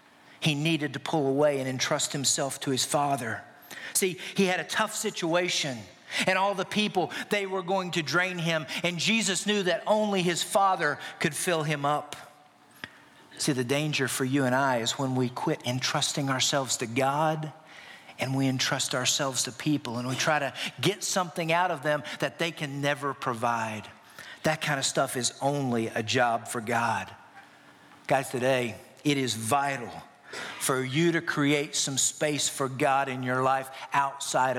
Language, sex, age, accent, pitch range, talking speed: English, male, 50-69, American, 130-165 Hz, 175 wpm